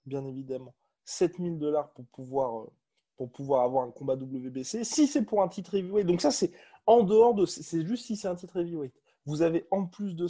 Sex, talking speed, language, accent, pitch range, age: male, 215 wpm, French, French, 145-190 Hz, 20-39